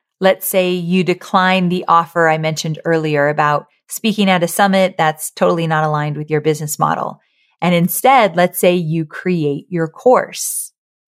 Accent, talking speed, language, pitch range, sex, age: American, 160 wpm, English, 165-205 Hz, female, 30-49